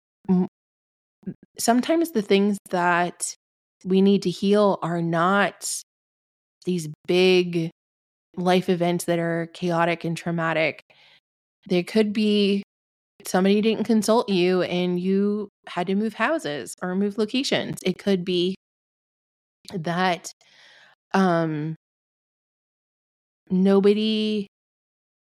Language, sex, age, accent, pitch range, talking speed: English, female, 20-39, American, 175-205 Hz, 95 wpm